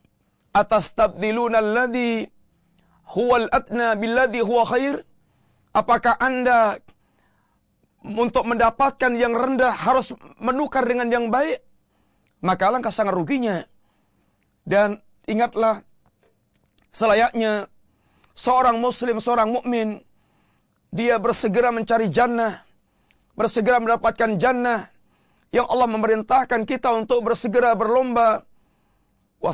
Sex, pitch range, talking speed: male, 215-245 Hz, 85 wpm